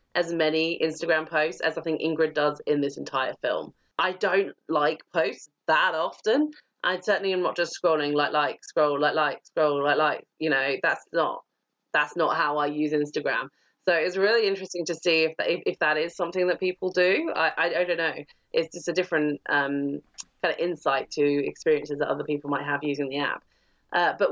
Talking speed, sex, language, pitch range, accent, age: 200 wpm, female, English, 150-175 Hz, British, 30-49